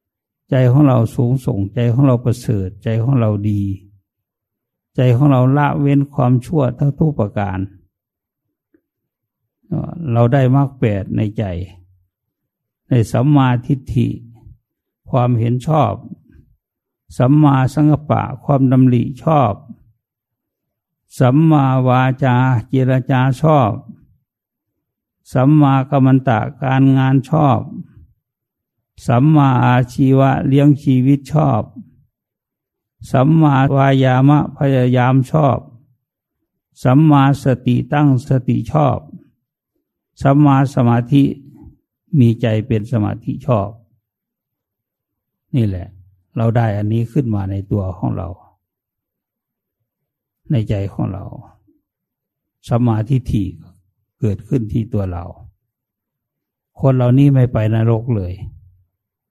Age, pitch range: 60-79, 110-135 Hz